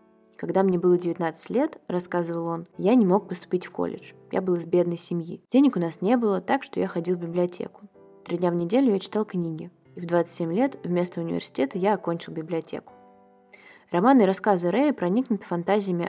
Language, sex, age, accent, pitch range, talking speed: Russian, female, 20-39, native, 170-210 Hz, 200 wpm